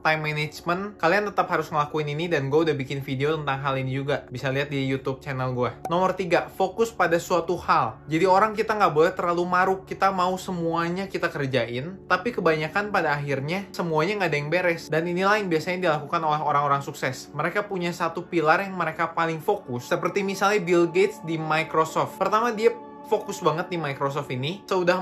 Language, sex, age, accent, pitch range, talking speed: Indonesian, male, 20-39, native, 150-180 Hz, 190 wpm